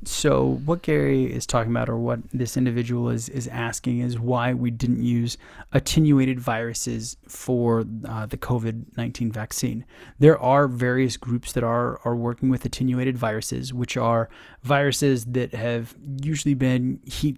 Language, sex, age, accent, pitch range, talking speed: English, male, 20-39, American, 115-130 Hz, 150 wpm